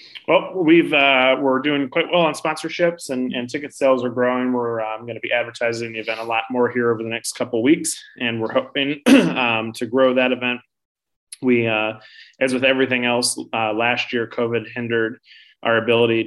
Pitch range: 110-130 Hz